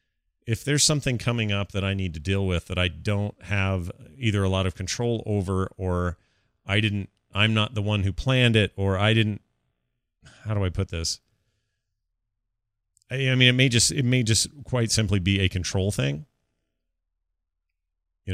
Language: English